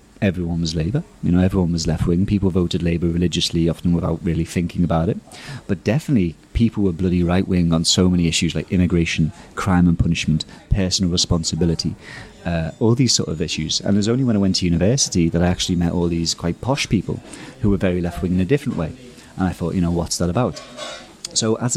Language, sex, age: English, male, 30-49